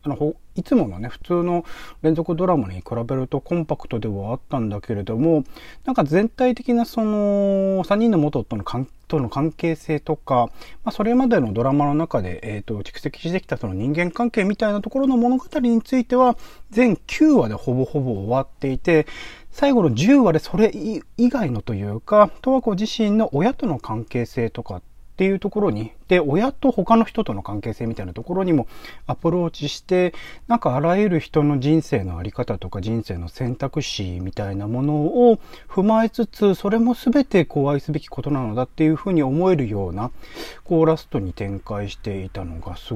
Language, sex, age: Japanese, male, 40-59